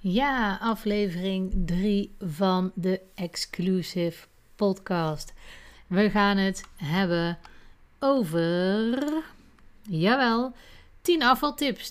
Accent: Dutch